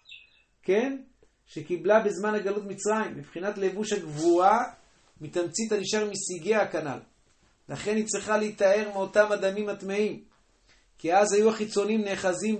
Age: 40-59